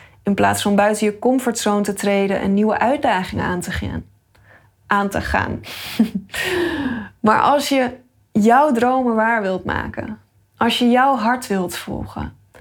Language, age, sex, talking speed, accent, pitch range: Dutch, 20-39, female, 150 wpm, Dutch, 200-245 Hz